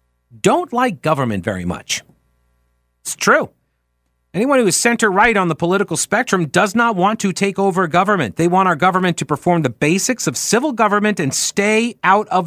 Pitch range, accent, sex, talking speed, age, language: 130-190 Hz, American, male, 180 wpm, 40-59, English